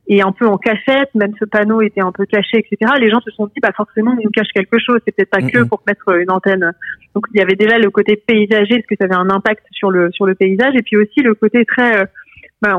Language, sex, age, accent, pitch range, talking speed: French, female, 30-49, French, 205-240 Hz, 270 wpm